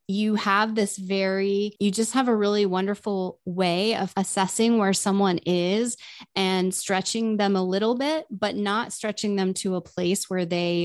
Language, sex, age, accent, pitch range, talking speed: English, female, 20-39, American, 175-205 Hz, 170 wpm